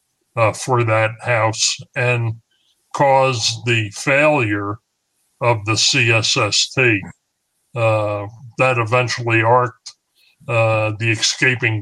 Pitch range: 110-130 Hz